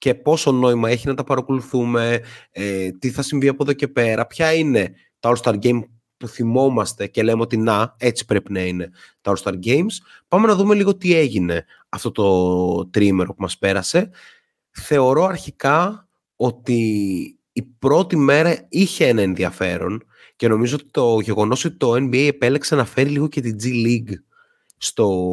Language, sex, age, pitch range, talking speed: Greek, male, 30-49, 105-135 Hz, 165 wpm